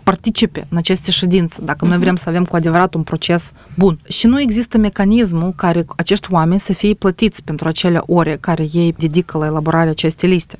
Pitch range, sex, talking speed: 170-210 Hz, female, 195 wpm